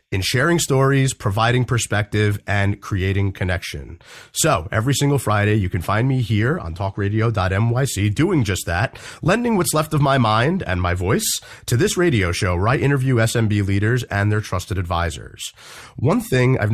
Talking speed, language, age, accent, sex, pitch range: 170 wpm, English, 30-49, American, male, 100-135 Hz